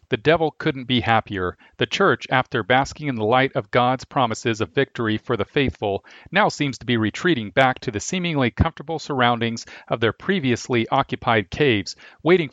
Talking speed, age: 175 wpm, 40-59